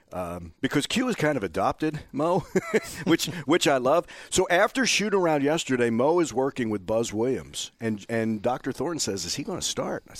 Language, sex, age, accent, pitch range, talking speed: English, male, 50-69, American, 105-140 Hz, 200 wpm